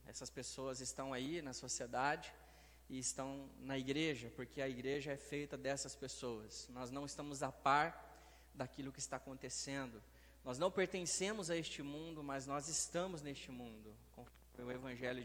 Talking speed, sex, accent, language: 155 wpm, male, Brazilian, Portuguese